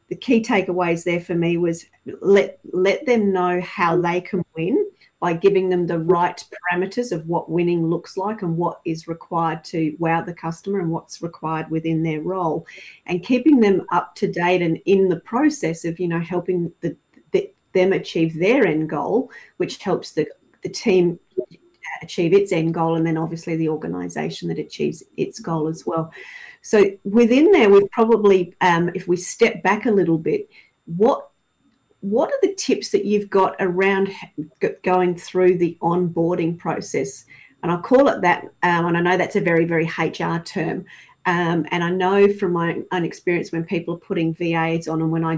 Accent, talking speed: Australian, 185 wpm